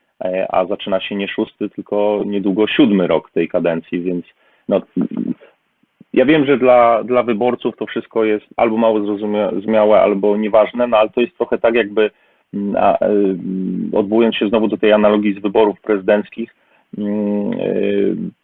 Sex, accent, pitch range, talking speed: male, native, 105-120 Hz, 155 wpm